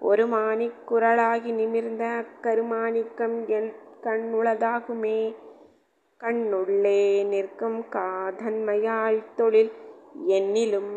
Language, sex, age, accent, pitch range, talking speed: Tamil, female, 20-39, native, 210-230 Hz, 55 wpm